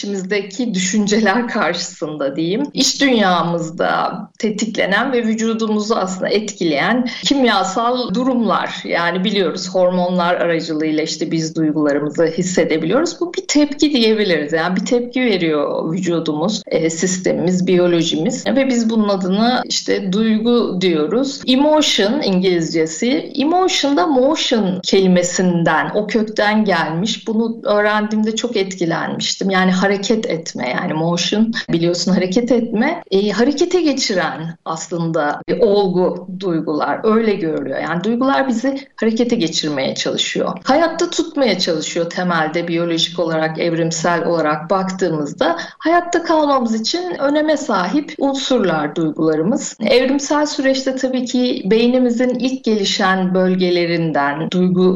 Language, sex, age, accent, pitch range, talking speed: Turkish, female, 50-69, native, 175-250 Hz, 110 wpm